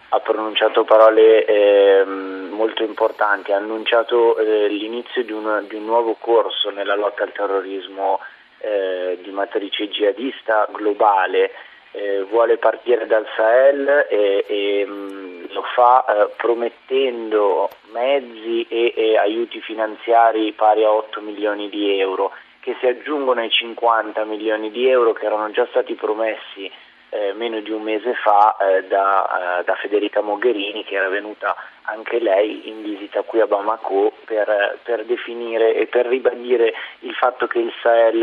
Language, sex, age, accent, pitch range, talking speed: Italian, male, 30-49, native, 105-120 Hz, 145 wpm